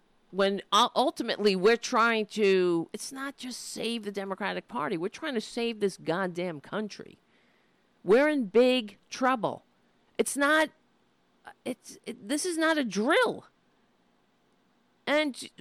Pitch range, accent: 215-280 Hz, American